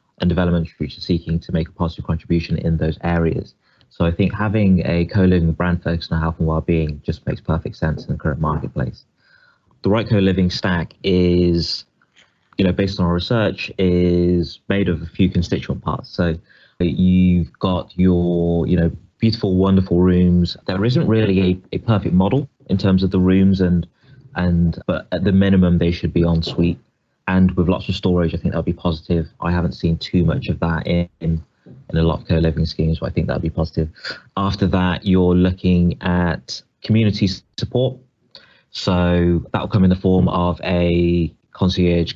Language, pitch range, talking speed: English, 85-95 Hz, 185 wpm